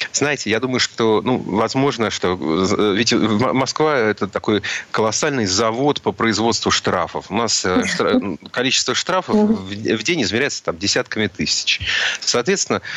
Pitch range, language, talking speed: 100-125 Hz, Russian, 135 wpm